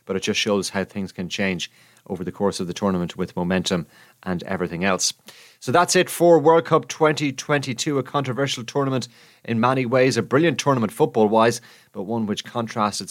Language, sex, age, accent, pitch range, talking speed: English, male, 30-49, Irish, 100-140 Hz, 185 wpm